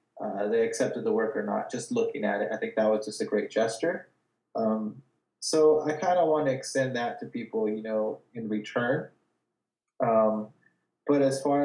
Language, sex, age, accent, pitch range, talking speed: English, male, 20-39, American, 110-155 Hz, 195 wpm